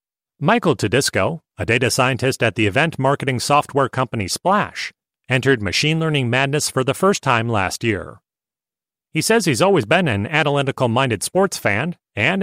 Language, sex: English, male